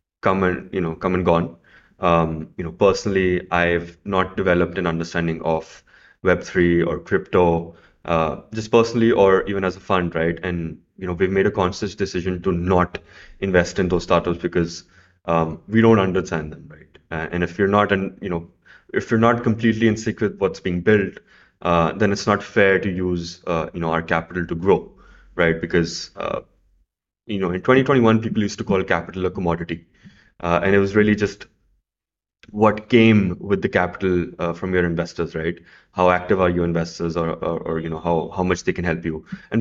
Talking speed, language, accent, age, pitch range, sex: 195 wpm, English, Indian, 20-39, 85-105 Hz, male